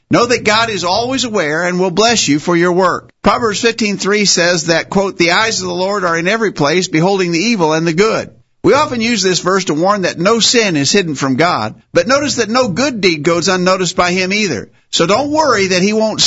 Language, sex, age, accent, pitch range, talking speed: English, male, 50-69, American, 165-210 Hz, 235 wpm